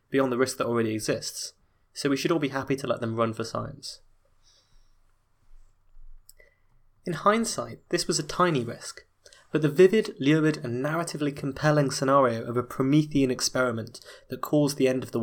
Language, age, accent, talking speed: English, 20-39, British, 170 wpm